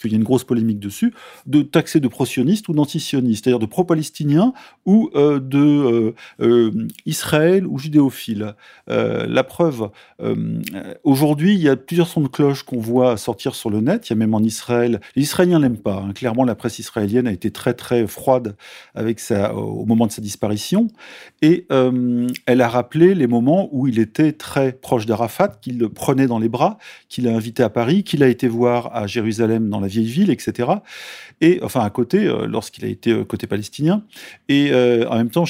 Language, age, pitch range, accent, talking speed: French, 40-59, 115-150 Hz, French, 200 wpm